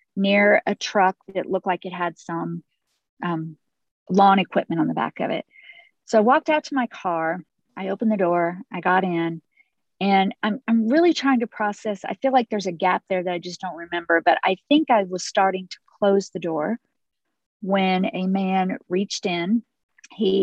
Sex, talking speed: female, 195 wpm